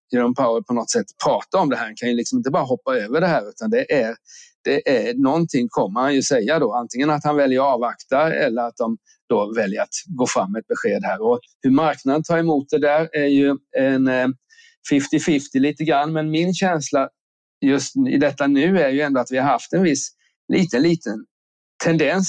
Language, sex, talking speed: Swedish, male, 215 wpm